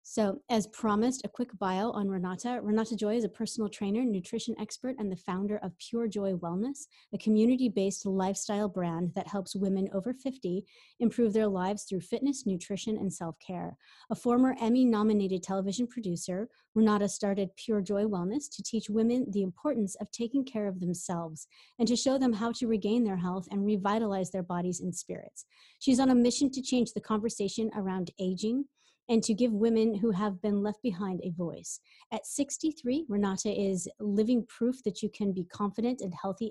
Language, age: English, 30-49